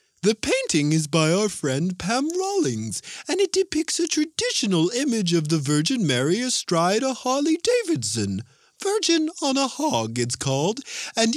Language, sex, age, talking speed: English, male, 40-59, 155 wpm